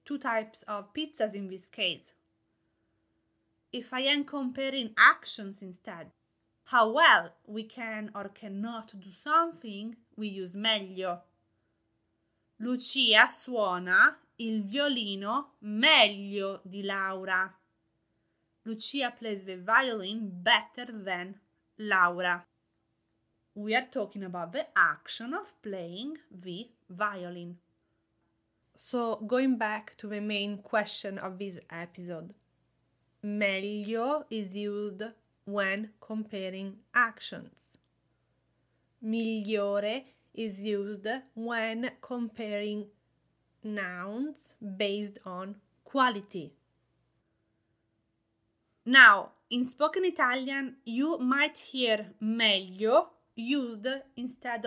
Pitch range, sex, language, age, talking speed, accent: 190-240 Hz, female, English, 20-39, 90 wpm, Italian